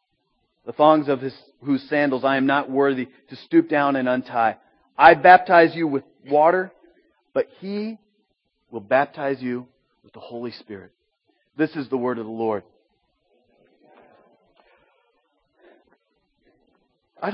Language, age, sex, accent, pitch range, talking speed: English, 40-59, male, American, 125-150 Hz, 130 wpm